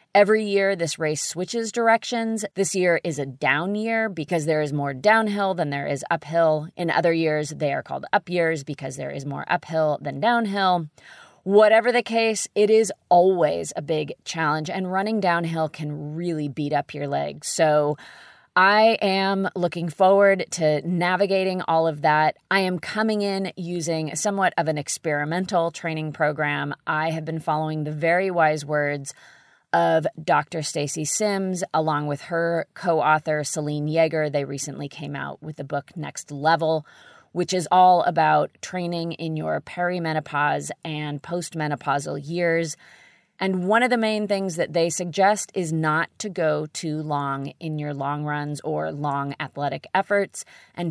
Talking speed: 165 wpm